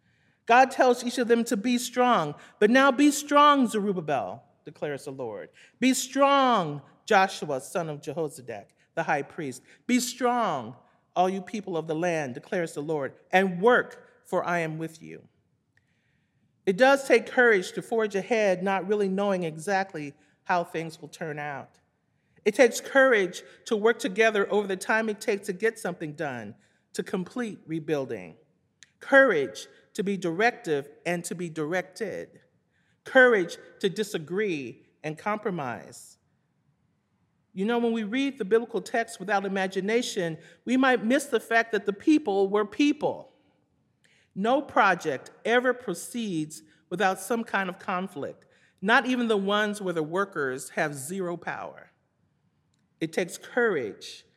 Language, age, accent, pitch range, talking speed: English, 40-59, American, 170-235 Hz, 145 wpm